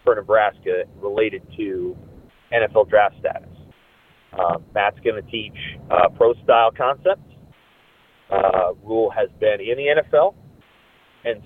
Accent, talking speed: American, 125 wpm